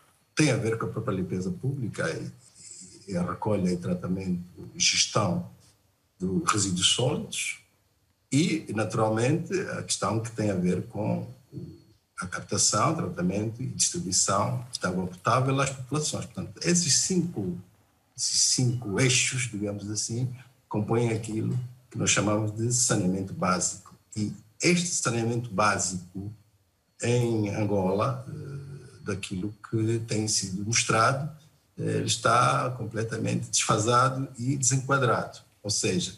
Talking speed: 120 wpm